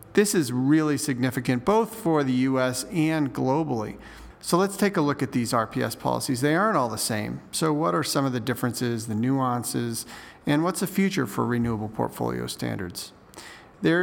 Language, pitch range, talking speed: English, 120-150 Hz, 180 wpm